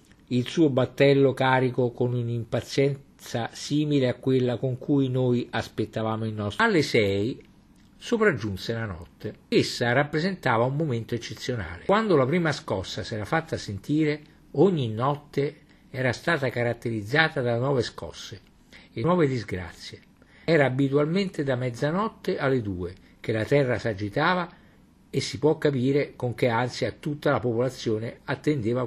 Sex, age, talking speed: male, 50-69, 135 wpm